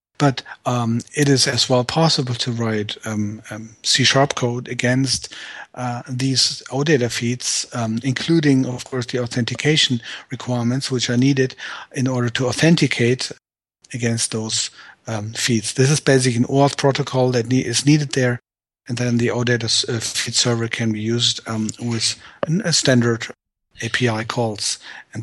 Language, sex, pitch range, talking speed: English, male, 120-140 Hz, 155 wpm